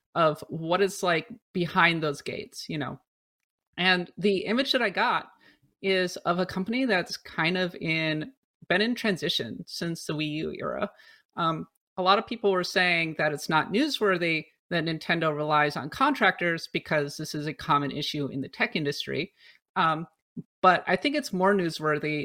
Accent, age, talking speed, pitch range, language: American, 30-49, 170 wpm, 155-195 Hz, English